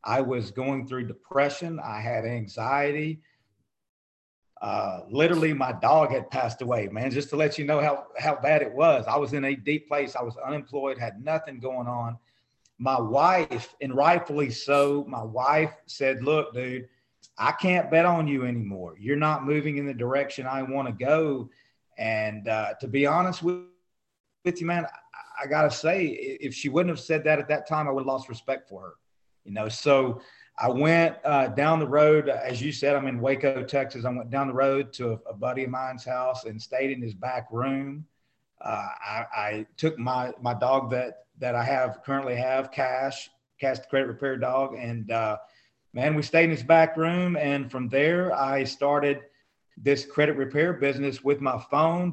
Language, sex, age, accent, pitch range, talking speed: English, male, 40-59, American, 125-150 Hz, 195 wpm